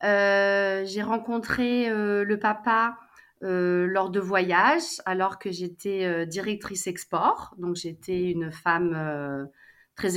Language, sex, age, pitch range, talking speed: French, female, 30-49, 180-225 Hz, 130 wpm